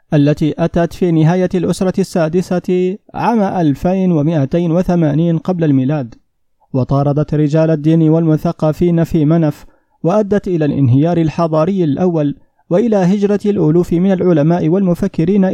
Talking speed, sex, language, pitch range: 105 wpm, male, Arabic, 145-175 Hz